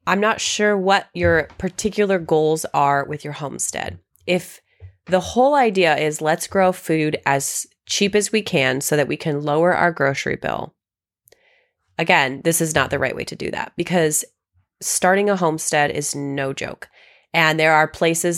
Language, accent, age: English, American, 20-39